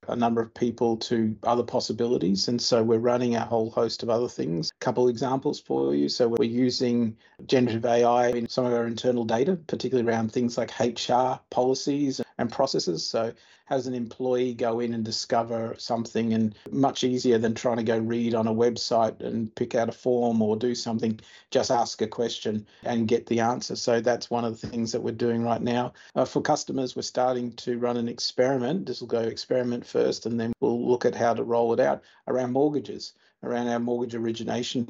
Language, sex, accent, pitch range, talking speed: English, male, Australian, 115-125 Hz, 205 wpm